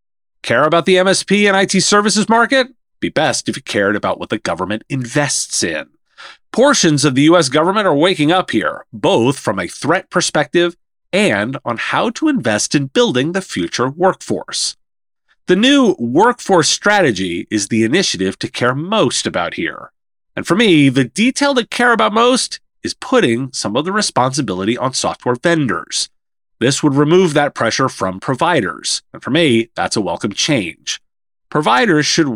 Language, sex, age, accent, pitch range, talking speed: English, male, 30-49, American, 125-195 Hz, 165 wpm